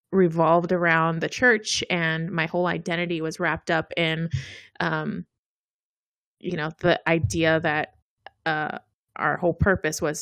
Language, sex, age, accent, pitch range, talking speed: English, female, 20-39, American, 170-205 Hz, 135 wpm